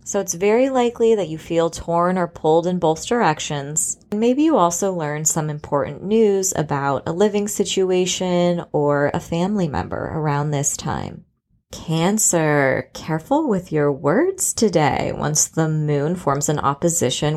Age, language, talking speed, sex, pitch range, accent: 20-39, English, 150 wpm, female, 150-190 Hz, American